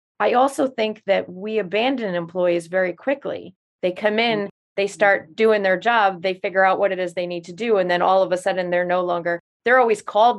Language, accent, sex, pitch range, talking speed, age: English, American, female, 180-210 Hz, 225 wpm, 30-49